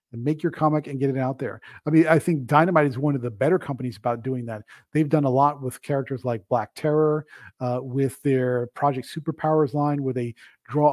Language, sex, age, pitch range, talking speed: English, male, 40-59, 130-155 Hz, 225 wpm